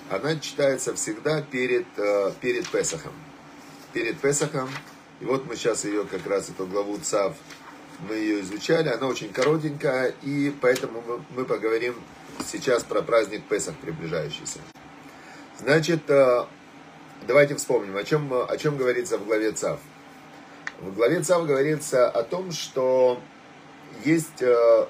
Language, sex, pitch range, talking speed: Russian, male, 115-155 Hz, 125 wpm